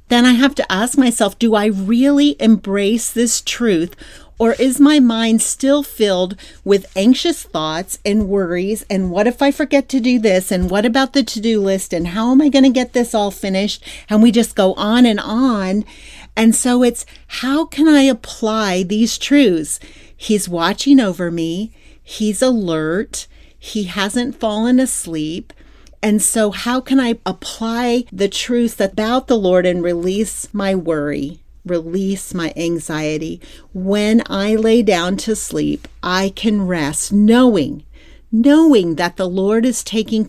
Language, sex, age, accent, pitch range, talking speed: English, female, 40-59, American, 180-235 Hz, 160 wpm